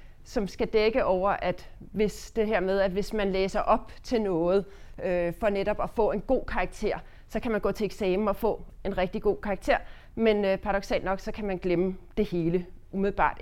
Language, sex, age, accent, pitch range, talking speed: English, female, 30-49, Danish, 170-215 Hz, 210 wpm